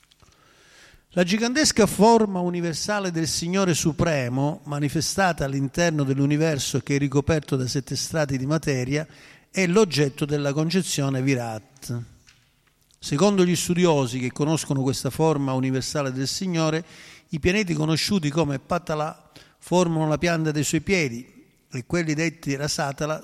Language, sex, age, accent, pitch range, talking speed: Italian, male, 50-69, native, 135-170 Hz, 125 wpm